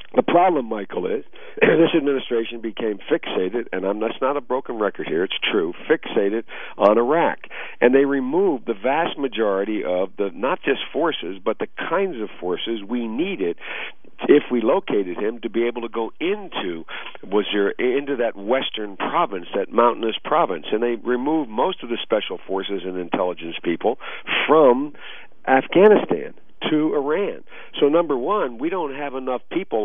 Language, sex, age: English, male, 50-69